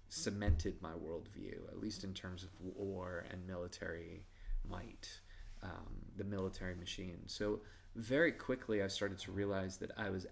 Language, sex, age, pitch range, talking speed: English, male, 20-39, 90-105 Hz, 150 wpm